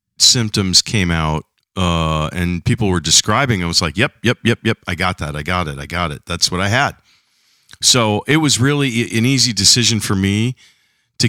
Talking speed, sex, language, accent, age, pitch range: 200 wpm, male, English, American, 50-69, 95-135 Hz